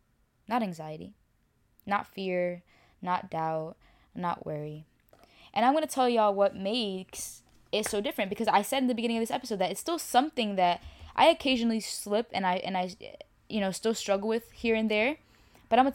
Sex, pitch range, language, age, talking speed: female, 180-225 Hz, English, 10-29, 190 wpm